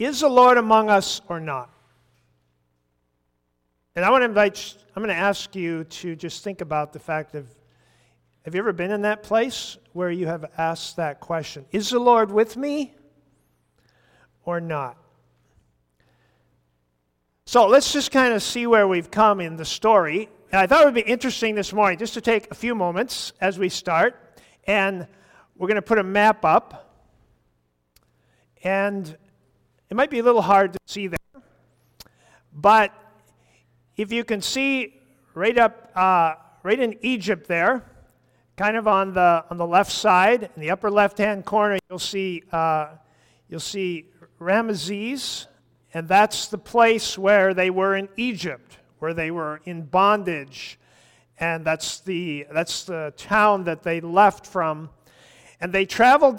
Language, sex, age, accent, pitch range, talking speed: English, male, 50-69, American, 160-220 Hz, 160 wpm